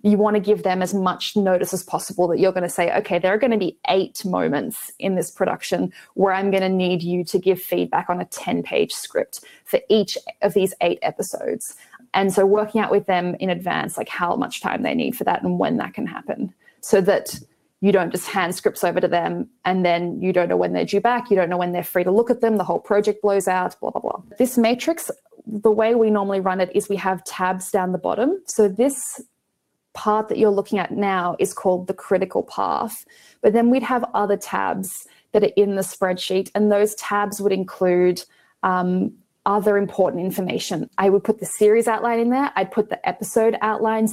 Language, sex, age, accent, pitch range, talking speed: English, female, 20-39, Australian, 185-215 Hz, 225 wpm